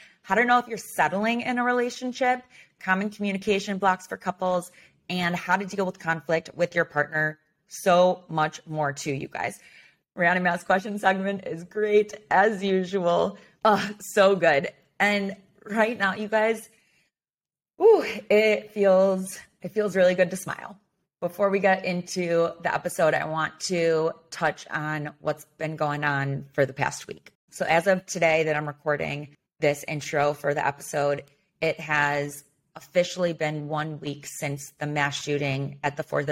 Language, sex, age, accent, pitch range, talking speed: English, female, 30-49, American, 150-190 Hz, 160 wpm